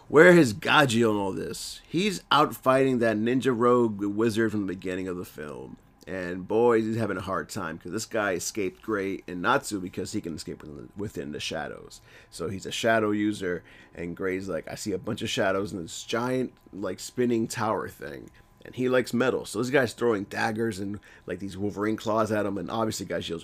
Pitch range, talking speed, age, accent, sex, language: 95-115 Hz, 205 wpm, 30-49, American, male, English